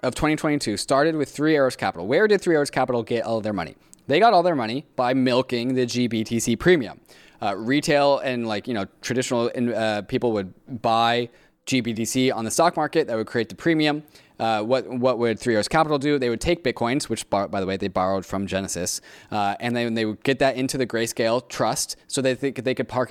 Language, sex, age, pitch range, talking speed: English, male, 20-39, 110-130 Hz, 225 wpm